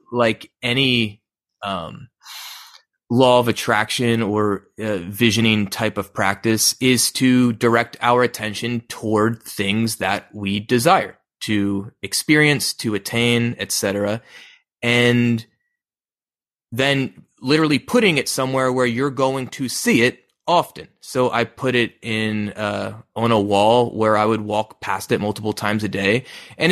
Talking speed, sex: 135 wpm, male